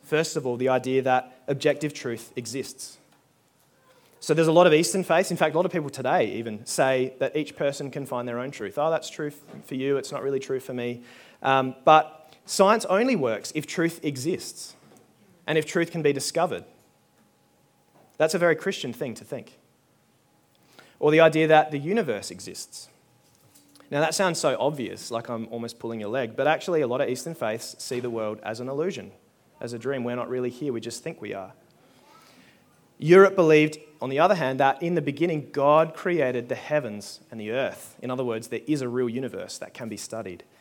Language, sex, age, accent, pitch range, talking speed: English, male, 20-39, Australian, 125-155 Hz, 200 wpm